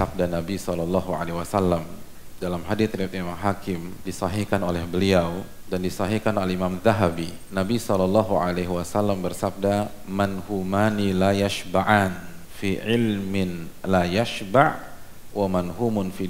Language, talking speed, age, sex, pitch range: Indonesian, 105 wpm, 40-59, male, 90-105 Hz